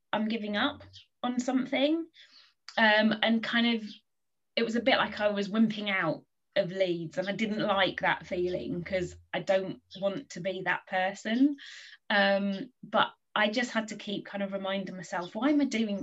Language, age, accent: English, 20-39, British